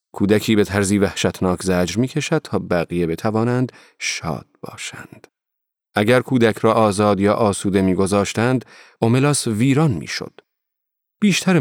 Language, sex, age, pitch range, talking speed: Persian, male, 40-59, 95-125 Hz, 120 wpm